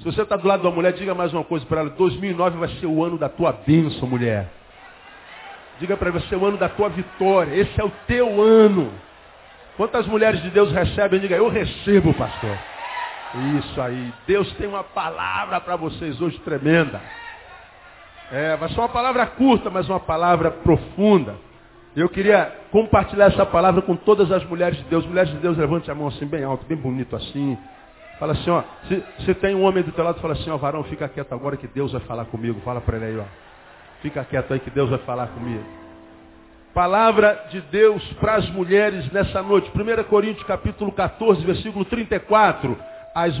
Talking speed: 190 wpm